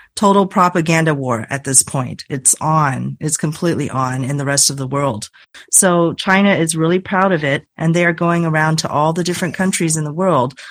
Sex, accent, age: female, American, 40-59